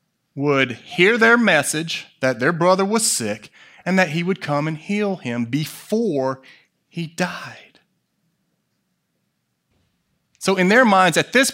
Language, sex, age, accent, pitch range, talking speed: English, male, 30-49, American, 135-185 Hz, 135 wpm